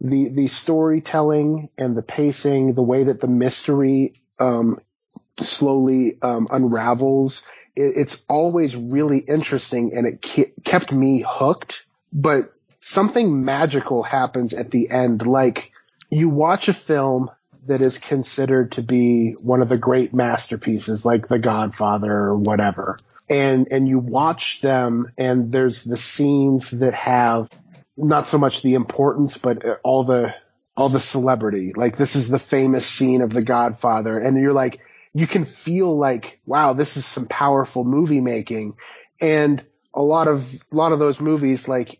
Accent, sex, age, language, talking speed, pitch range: American, male, 30-49, English, 155 wpm, 125-150 Hz